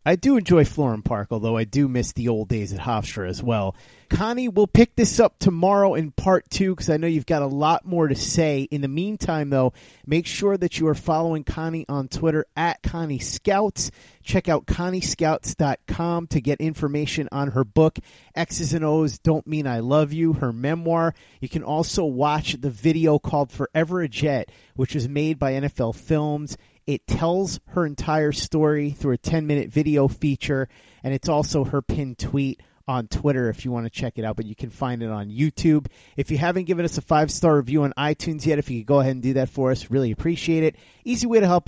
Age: 30-49